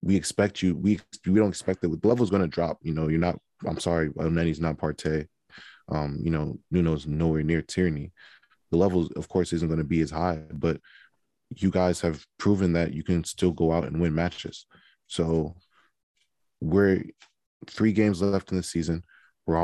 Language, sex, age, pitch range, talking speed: English, male, 20-39, 85-100 Hz, 185 wpm